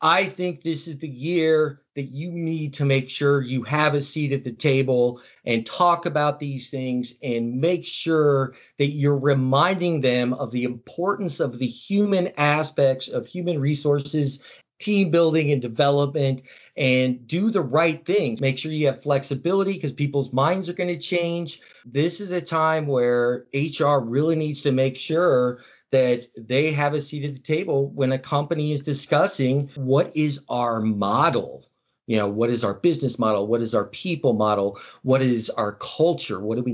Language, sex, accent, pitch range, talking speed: English, male, American, 130-165 Hz, 180 wpm